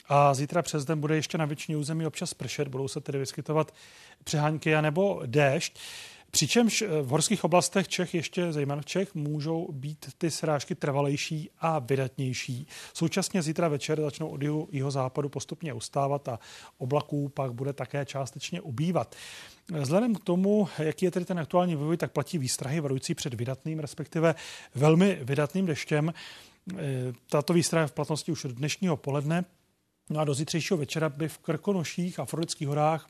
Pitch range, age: 145-165 Hz, 30-49